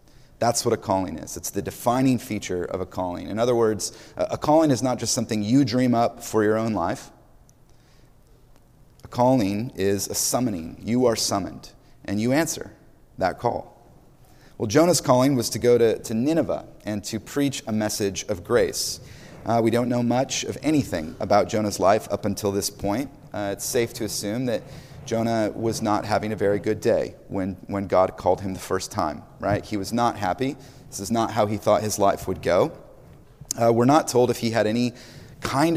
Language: English